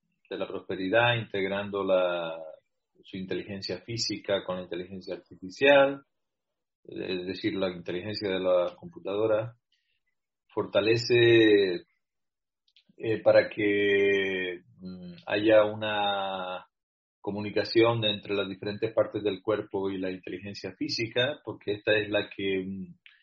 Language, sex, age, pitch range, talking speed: English, male, 40-59, 95-110 Hz, 110 wpm